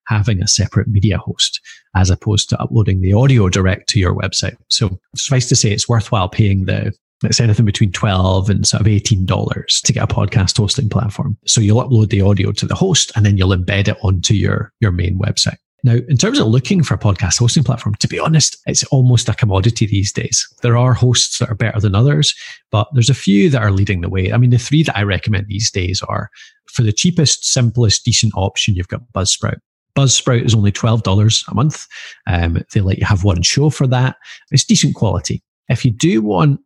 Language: English